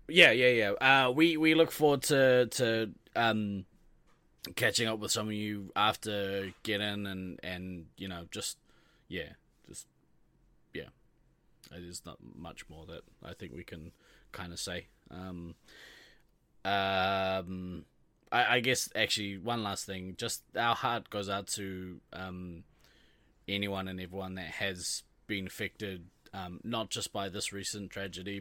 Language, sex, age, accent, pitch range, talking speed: English, male, 20-39, Australian, 85-105 Hz, 150 wpm